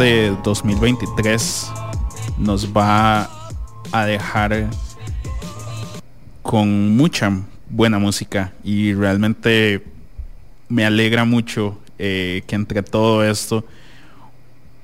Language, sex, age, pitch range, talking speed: English, male, 30-49, 100-120 Hz, 75 wpm